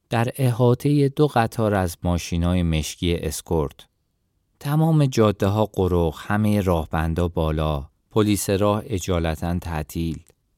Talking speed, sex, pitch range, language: 100 wpm, male, 85-125 Hz, Persian